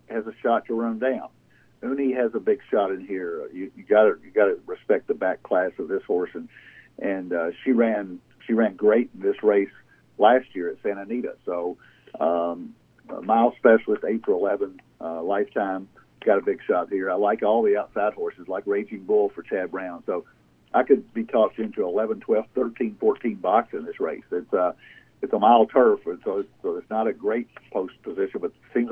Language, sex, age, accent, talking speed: English, male, 50-69, American, 205 wpm